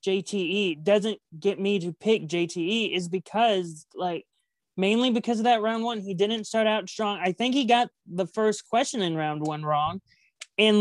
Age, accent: 20-39, American